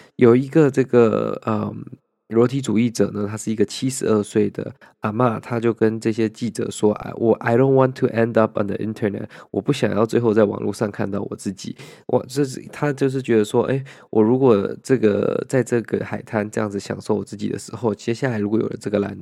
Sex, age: male, 20-39